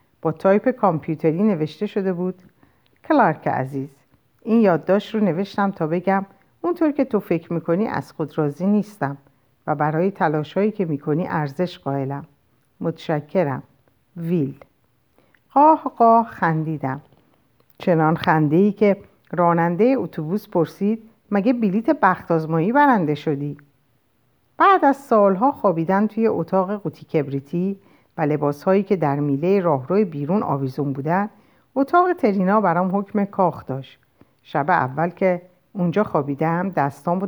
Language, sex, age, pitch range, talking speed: Persian, female, 50-69, 150-210 Hz, 120 wpm